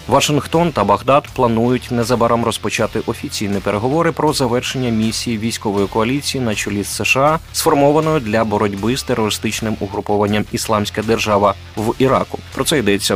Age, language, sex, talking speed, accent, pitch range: 20-39, Ukrainian, male, 135 wpm, native, 100-135 Hz